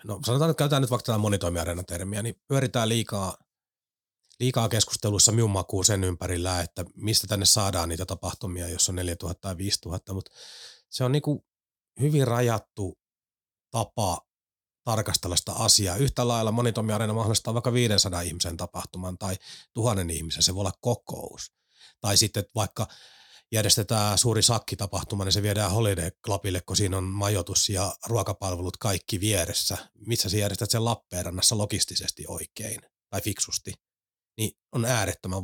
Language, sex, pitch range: Finnish, male, 95-115 Hz